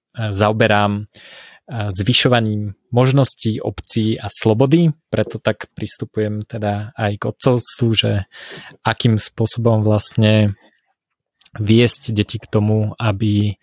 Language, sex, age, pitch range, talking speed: Slovak, male, 20-39, 105-115 Hz, 95 wpm